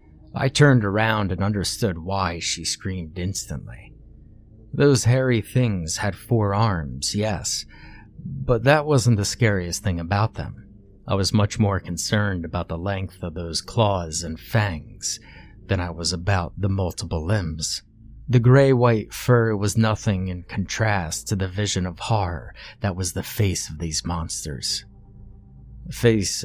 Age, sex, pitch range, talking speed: 30-49, male, 95-115 Hz, 145 wpm